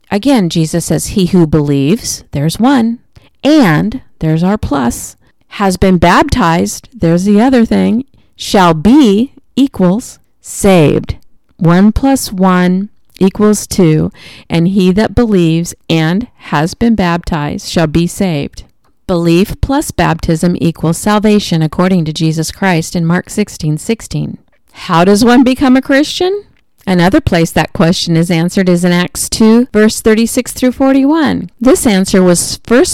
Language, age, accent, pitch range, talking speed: English, 40-59, American, 175-230 Hz, 140 wpm